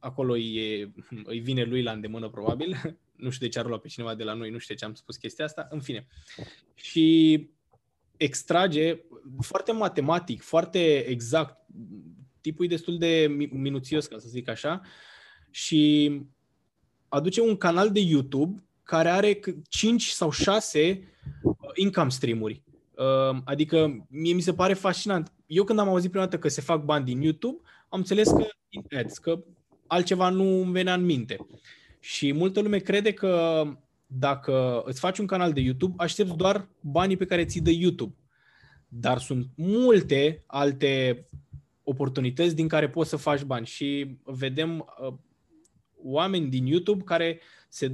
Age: 20-39